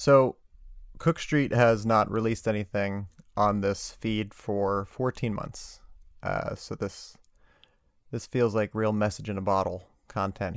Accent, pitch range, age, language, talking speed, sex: American, 100-115 Hz, 30-49, English, 125 wpm, male